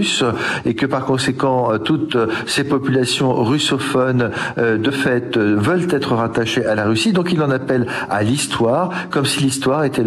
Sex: male